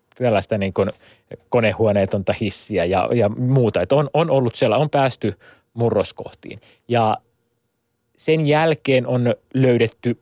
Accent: native